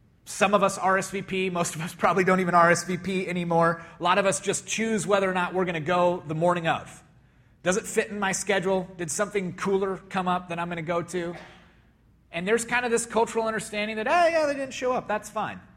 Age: 30-49